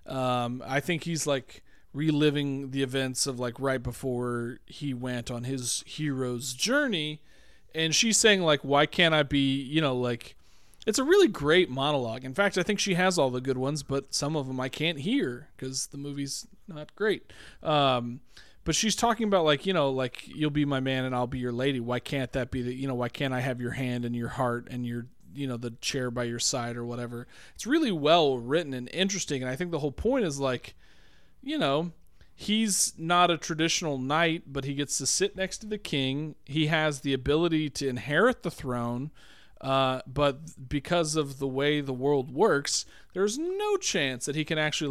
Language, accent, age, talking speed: English, American, 40-59, 205 wpm